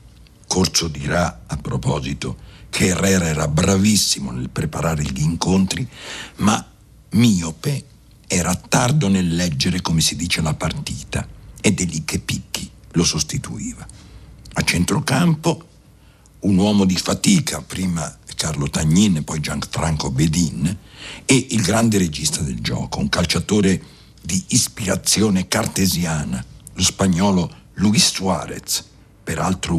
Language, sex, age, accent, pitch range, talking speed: Italian, male, 60-79, native, 80-105 Hz, 120 wpm